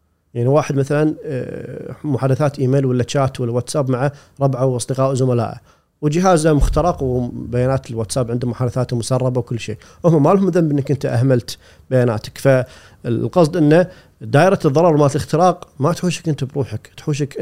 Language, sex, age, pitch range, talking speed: Arabic, male, 40-59, 125-155 Hz, 140 wpm